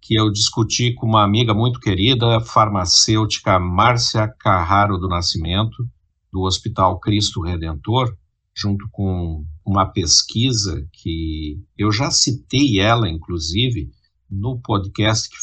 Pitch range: 95-125 Hz